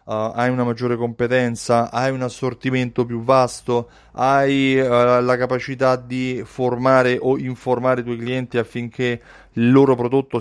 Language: Italian